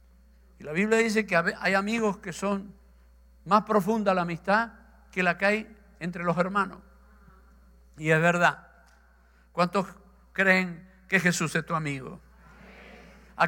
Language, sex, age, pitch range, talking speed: Spanish, male, 60-79, 150-200 Hz, 140 wpm